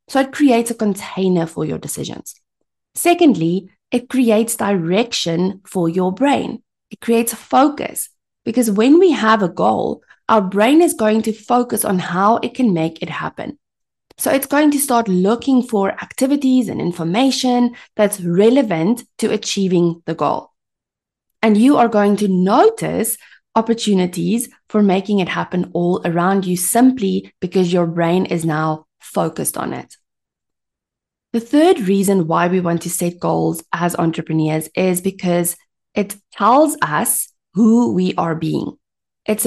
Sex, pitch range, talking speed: female, 180-230 Hz, 150 wpm